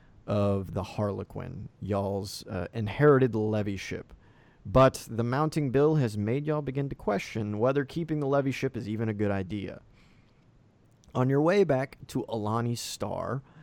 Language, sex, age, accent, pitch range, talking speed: English, male, 30-49, American, 105-140 Hz, 155 wpm